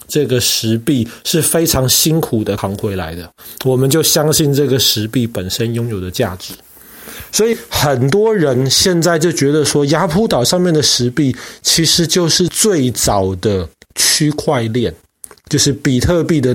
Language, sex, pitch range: Chinese, male, 120-170 Hz